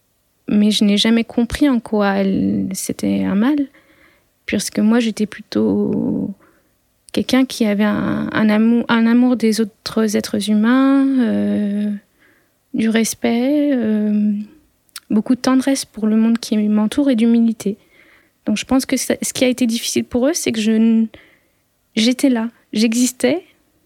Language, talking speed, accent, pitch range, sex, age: French, 150 wpm, French, 210-255 Hz, female, 20-39